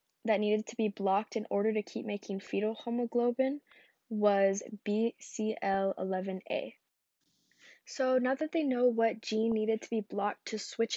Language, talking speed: English, 150 wpm